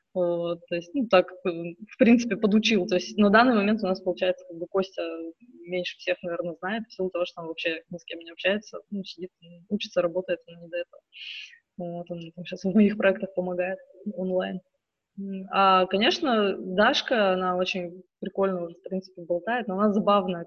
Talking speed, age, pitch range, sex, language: 190 wpm, 20-39, 180-215 Hz, female, Russian